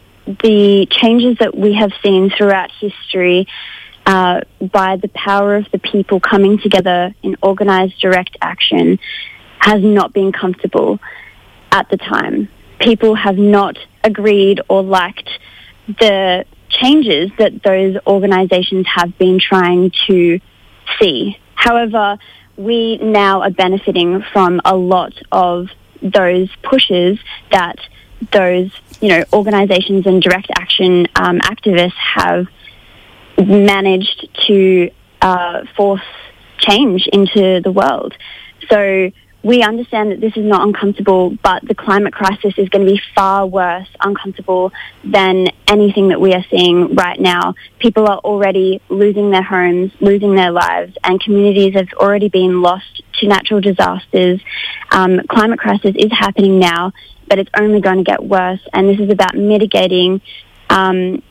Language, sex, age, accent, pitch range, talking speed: English, female, 20-39, Australian, 185-205 Hz, 135 wpm